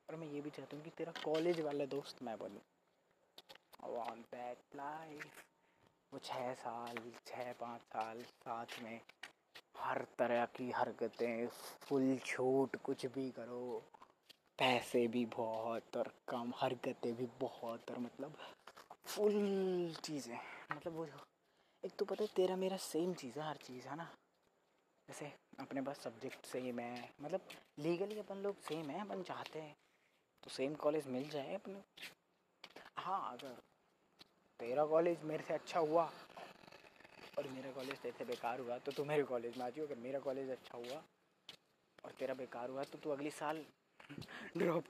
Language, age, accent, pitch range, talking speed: Hindi, 20-39, native, 125-155 Hz, 130 wpm